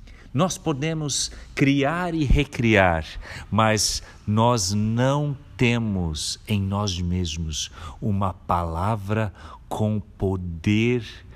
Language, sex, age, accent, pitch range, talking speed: Portuguese, male, 50-69, Brazilian, 85-115 Hz, 90 wpm